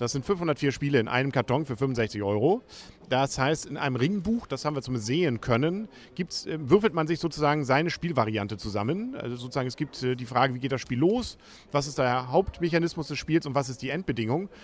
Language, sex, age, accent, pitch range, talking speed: German, male, 40-59, German, 130-170 Hz, 210 wpm